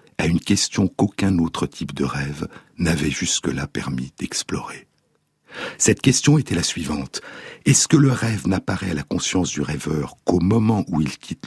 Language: French